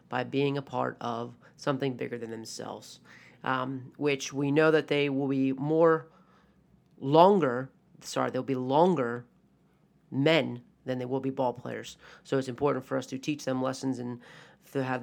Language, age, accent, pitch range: English, 30-49, American, 135-165 Hz